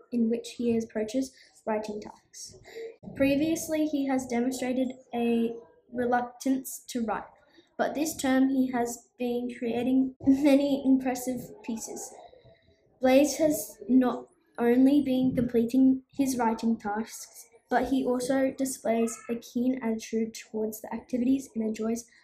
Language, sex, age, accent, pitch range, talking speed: English, female, 10-29, Australian, 235-270 Hz, 120 wpm